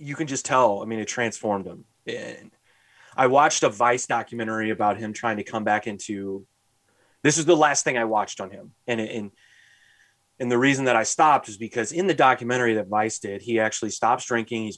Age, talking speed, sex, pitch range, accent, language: 30-49, 215 wpm, male, 105-120 Hz, American, English